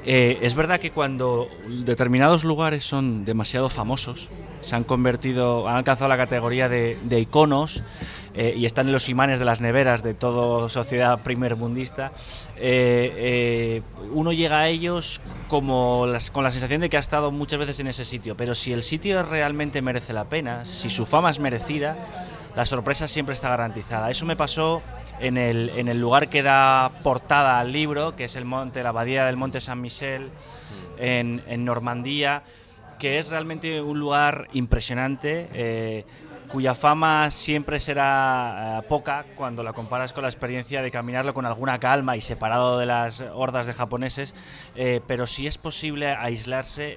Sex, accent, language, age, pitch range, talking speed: male, Spanish, Spanish, 20-39, 120-145 Hz, 170 wpm